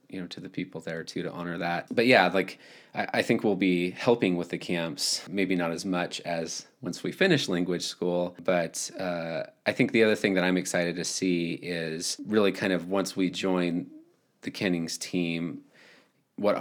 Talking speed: 200 wpm